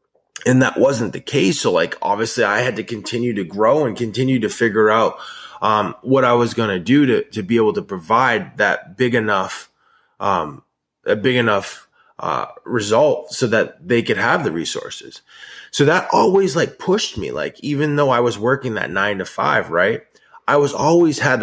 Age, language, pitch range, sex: 20-39, English, 110-140 Hz, male